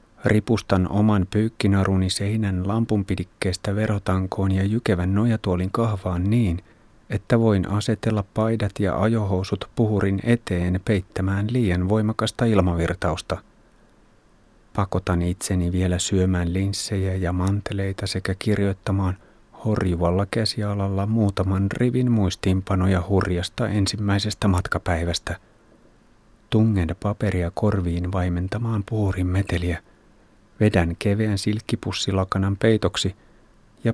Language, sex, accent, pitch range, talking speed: Finnish, male, native, 95-110 Hz, 90 wpm